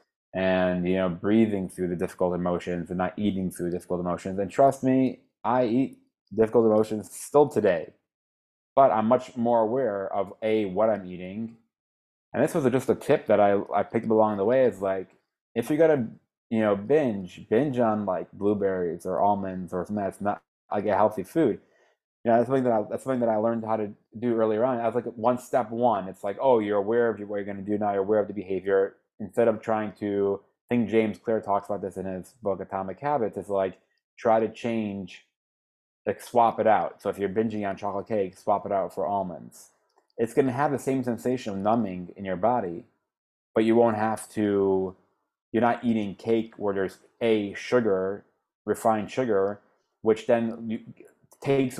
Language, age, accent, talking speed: English, 20-39, American, 205 wpm